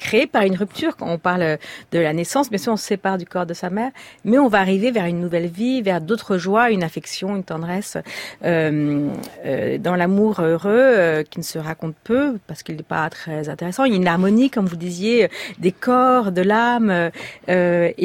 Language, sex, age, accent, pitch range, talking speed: French, female, 40-59, French, 170-220 Hz, 215 wpm